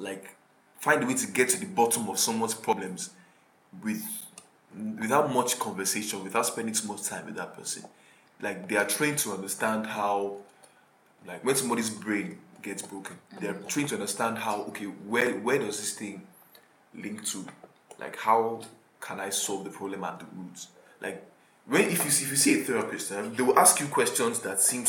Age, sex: 20-39, male